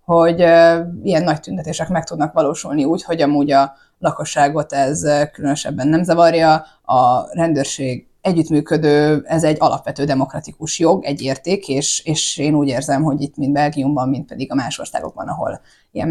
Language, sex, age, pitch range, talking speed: Hungarian, female, 20-39, 145-165 Hz, 155 wpm